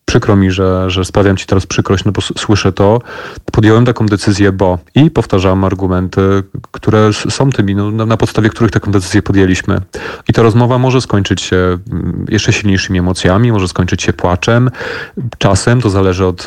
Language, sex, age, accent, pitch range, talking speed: Polish, male, 30-49, native, 95-110 Hz, 170 wpm